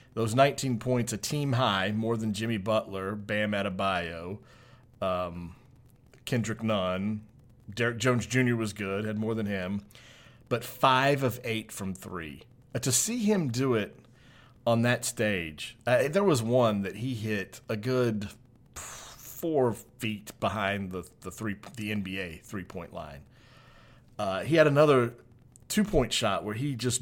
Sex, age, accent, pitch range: male, 40-59, American, 105-125 Hz